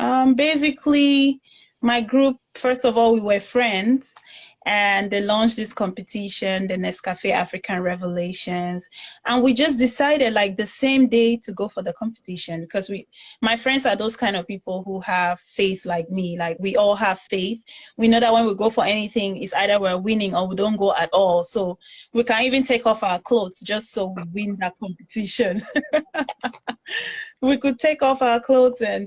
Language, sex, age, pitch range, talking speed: English, female, 20-39, 190-235 Hz, 185 wpm